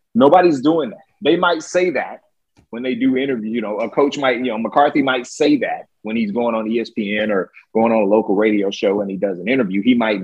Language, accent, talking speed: English, American, 240 wpm